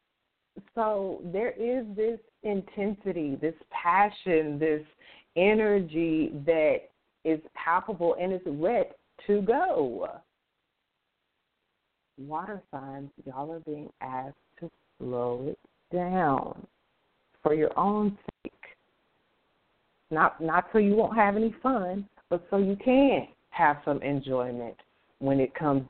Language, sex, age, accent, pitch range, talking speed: English, female, 40-59, American, 155-210 Hz, 115 wpm